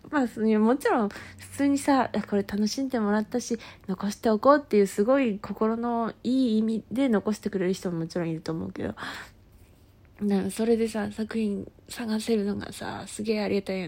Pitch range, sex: 200-290 Hz, female